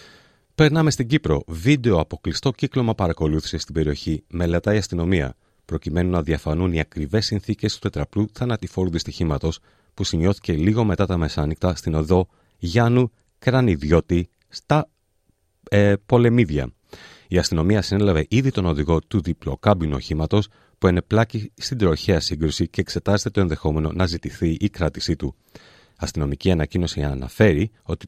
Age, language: 30-49, Greek